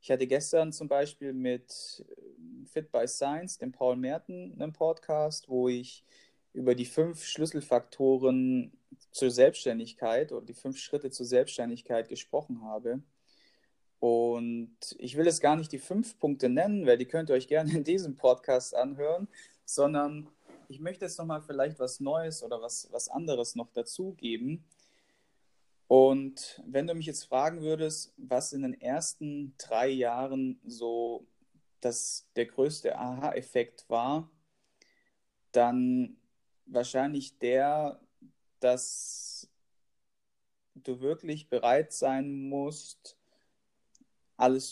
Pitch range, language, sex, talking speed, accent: 125-155 Hz, German, male, 125 wpm, German